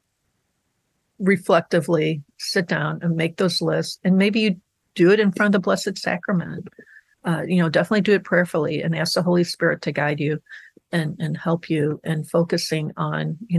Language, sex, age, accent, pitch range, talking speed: English, female, 50-69, American, 170-195 Hz, 180 wpm